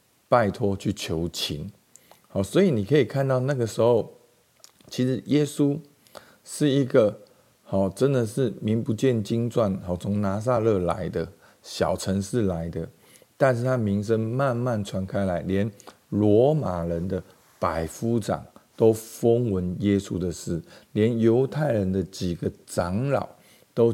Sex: male